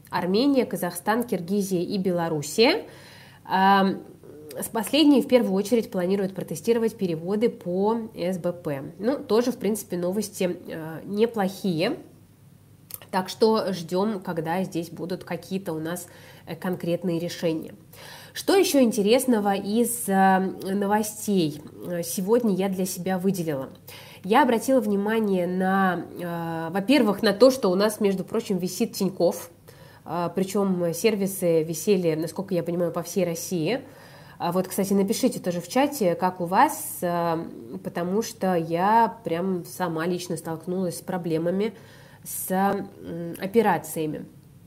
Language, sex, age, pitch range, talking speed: Russian, female, 20-39, 170-210 Hz, 115 wpm